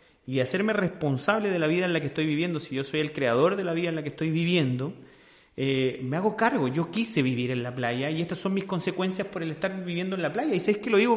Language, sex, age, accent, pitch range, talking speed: Spanish, male, 30-49, Argentinian, 140-180 Hz, 275 wpm